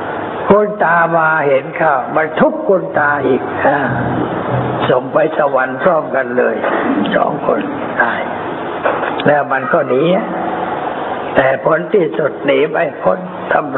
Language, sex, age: Thai, male, 60-79